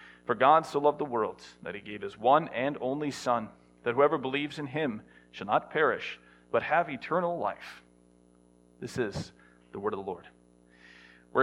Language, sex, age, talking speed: English, male, 40-59, 180 wpm